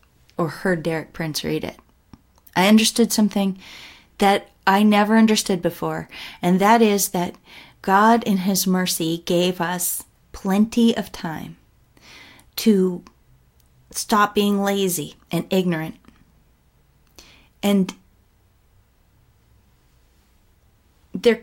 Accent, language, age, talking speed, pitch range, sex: American, English, 30-49, 100 wpm, 175-220 Hz, female